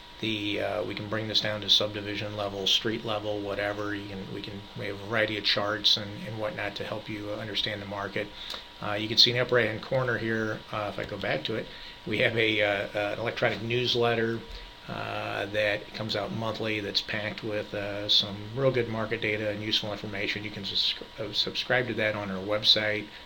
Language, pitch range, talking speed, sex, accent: English, 105-115 Hz, 215 wpm, male, American